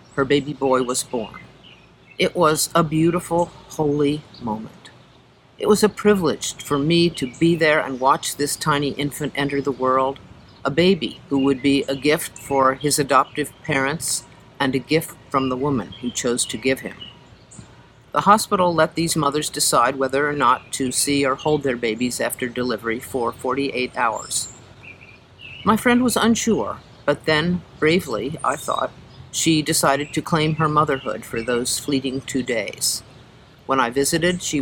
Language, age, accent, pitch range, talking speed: English, 50-69, American, 130-160 Hz, 165 wpm